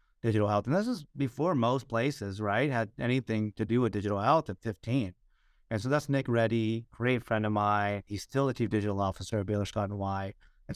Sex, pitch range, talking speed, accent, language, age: male, 100-120 Hz, 215 wpm, American, English, 30-49